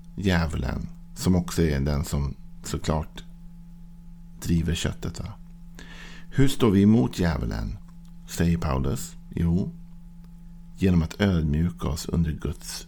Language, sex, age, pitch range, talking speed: Swedish, male, 50-69, 85-120 Hz, 110 wpm